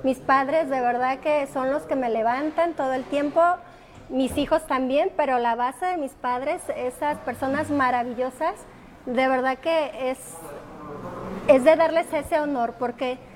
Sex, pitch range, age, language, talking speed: female, 265-330 Hz, 30-49, Spanish, 155 wpm